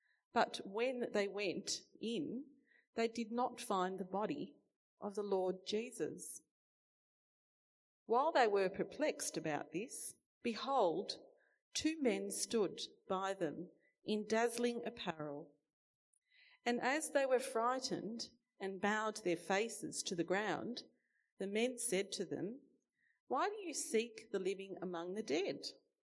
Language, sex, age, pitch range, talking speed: English, female, 40-59, 185-250 Hz, 130 wpm